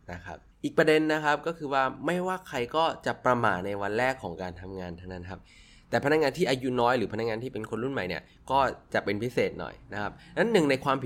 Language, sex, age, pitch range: Thai, male, 20-39, 90-125 Hz